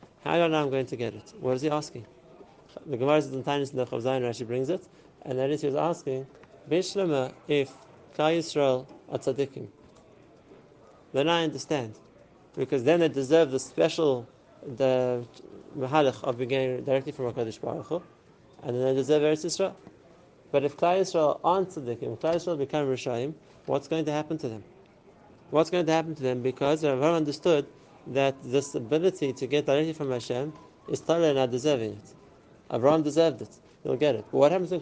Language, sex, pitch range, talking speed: English, male, 130-160 Hz, 190 wpm